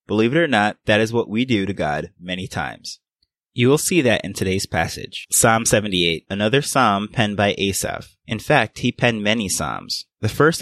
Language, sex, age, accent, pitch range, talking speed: English, male, 20-39, American, 95-120 Hz, 200 wpm